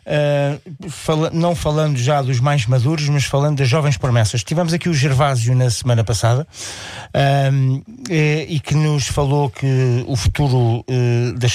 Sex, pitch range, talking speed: male, 130-160 Hz, 135 wpm